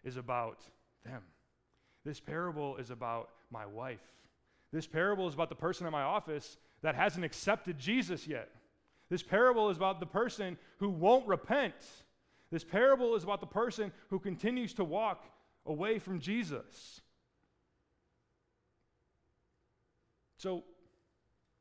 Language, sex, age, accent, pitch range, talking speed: English, male, 30-49, American, 140-225 Hz, 130 wpm